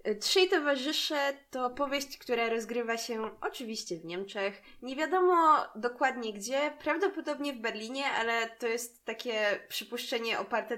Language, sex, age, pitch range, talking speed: Polish, female, 20-39, 215-270 Hz, 130 wpm